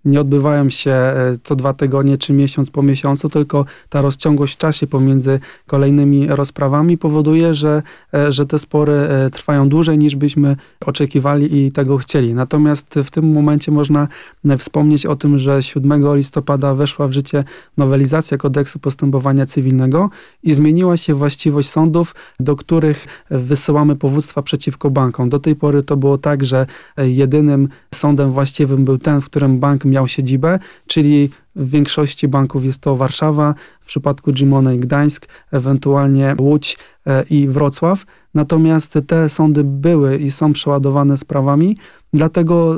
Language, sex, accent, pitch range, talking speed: Polish, male, native, 140-150 Hz, 145 wpm